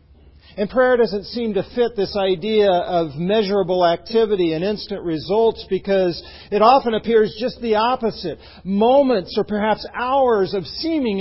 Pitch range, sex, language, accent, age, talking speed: 130-220 Hz, male, English, American, 50-69, 145 wpm